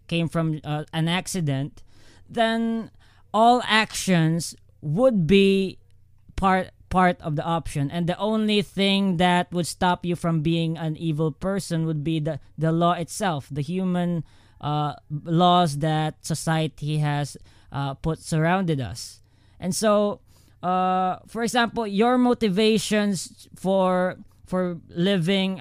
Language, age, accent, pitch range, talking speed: English, 20-39, Filipino, 155-195 Hz, 130 wpm